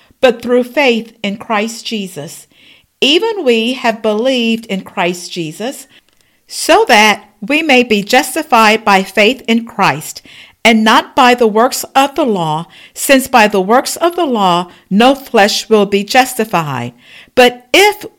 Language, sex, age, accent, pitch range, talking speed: English, female, 50-69, American, 200-275 Hz, 150 wpm